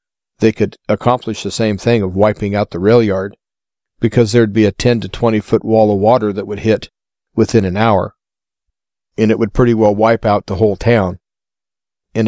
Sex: male